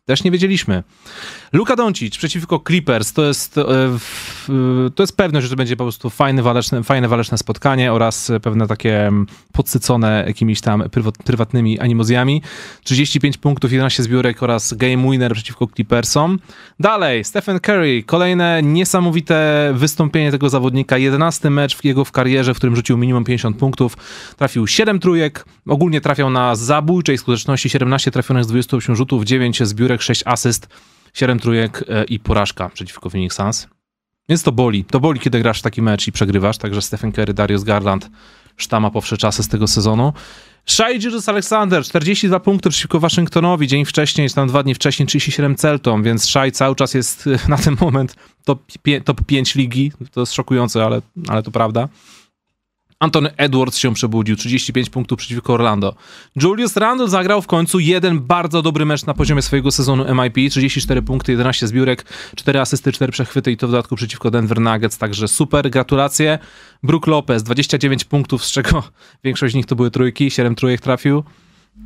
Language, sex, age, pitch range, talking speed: Polish, male, 30-49, 120-150 Hz, 165 wpm